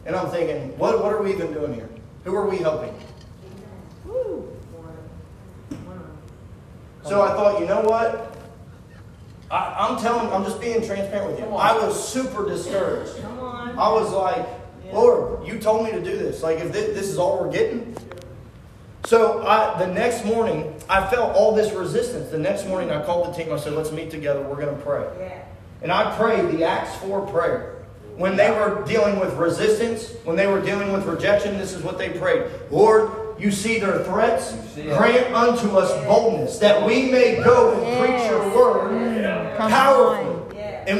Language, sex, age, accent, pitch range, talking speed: English, male, 30-49, American, 175-225 Hz, 175 wpm